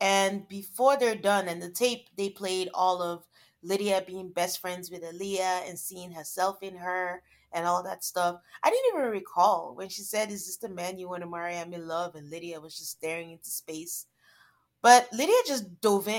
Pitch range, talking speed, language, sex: 175-215 Hz, 200 wpm, English, female